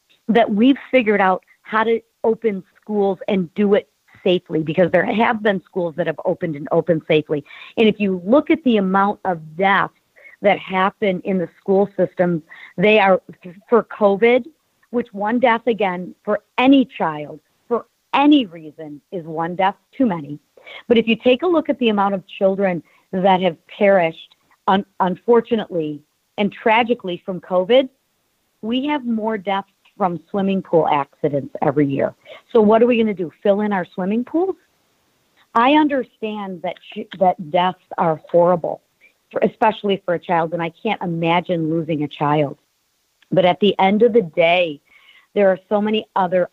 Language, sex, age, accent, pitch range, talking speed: English, female, 50-69, American, 170-225 Hz, 165 wpm